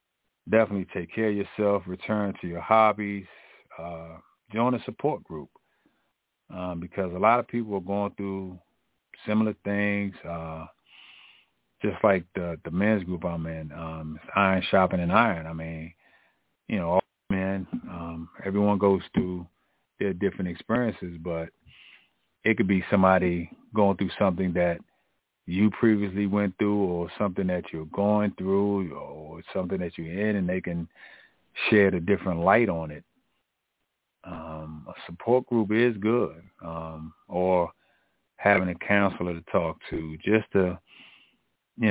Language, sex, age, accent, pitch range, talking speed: English, male, 40-59, American, 85-105 Hz, 145 wpm